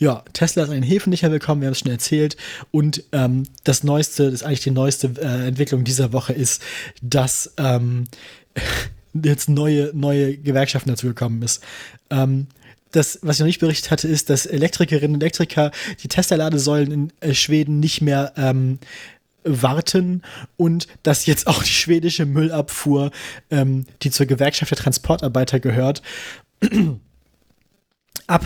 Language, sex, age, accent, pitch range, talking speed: German, male, 20-39, German, 135-160 Hz, 150 wpm